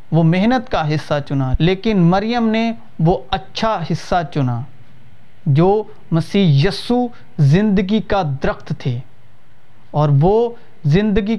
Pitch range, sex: 145-195 Hz, male